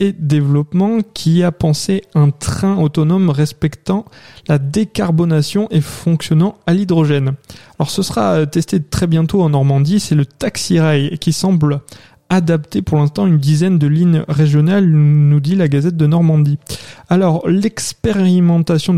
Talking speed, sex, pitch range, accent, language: 140 wpm, male, 145-185 Hz, French, French